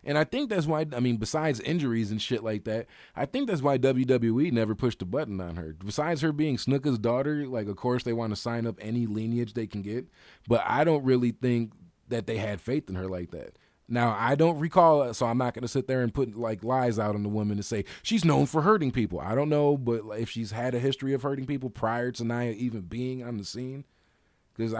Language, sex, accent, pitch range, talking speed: English, male, American, 105-130 Hz, 245 wpm